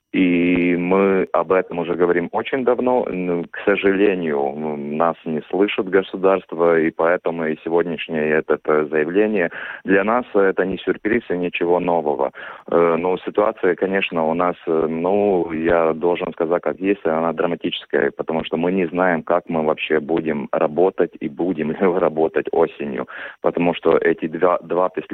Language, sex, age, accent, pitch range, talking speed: Russian, male, 30-49, native, 80-90 Hz, 140 wpm